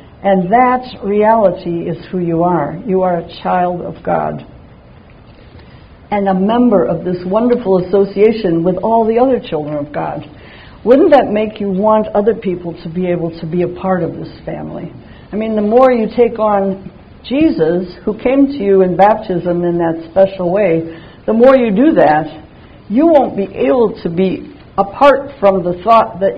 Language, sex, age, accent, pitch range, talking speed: English, female, 60-79, American, 170-220 Hz, 175 wpm